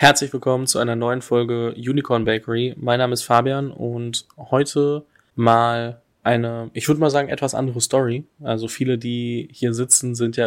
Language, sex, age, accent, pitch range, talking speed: German, male, 20-39, German, 115-130 Hz, 170 wpm